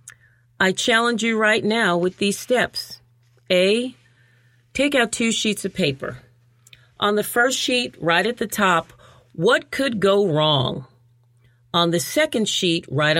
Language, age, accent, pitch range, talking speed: English, 40-59, American, 130-205 Hz, 145 wpm